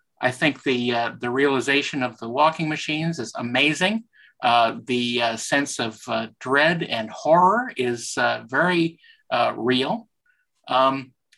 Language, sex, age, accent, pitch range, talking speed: English, male, 50-69, American, 125-165 Hz, 140 wpm